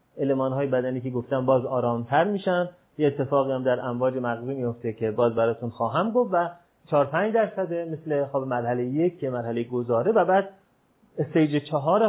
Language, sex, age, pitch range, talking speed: Persian, male, 30-49, 130-175 Hz, 180 wpm